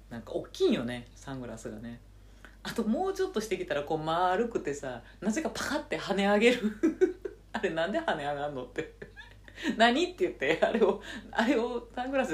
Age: 40-59